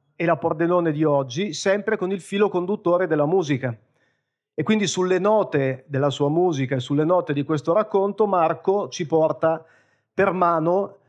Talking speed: 160 wpm